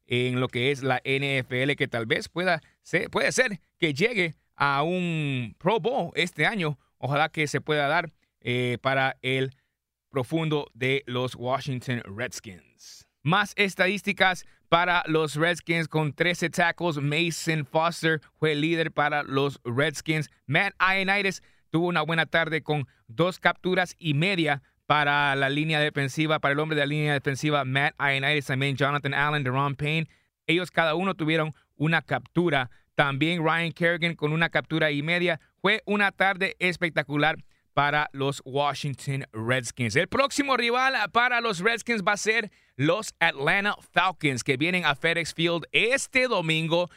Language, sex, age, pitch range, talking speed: English, male, 30-49, 140-170 Hz, 150 wpm